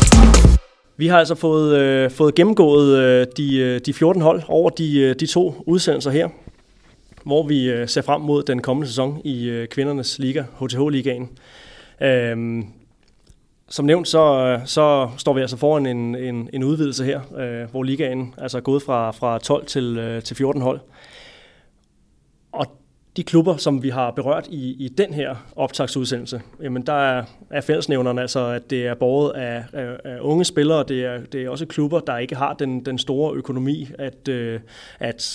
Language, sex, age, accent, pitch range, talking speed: Danish, male, 30-49, native, 125-145 Hz, 155 wpm